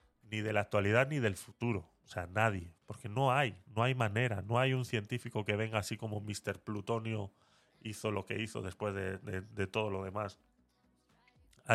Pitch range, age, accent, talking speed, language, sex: 100-125 Hz, 30-49, Spanish, 195 wpm, Spanish, male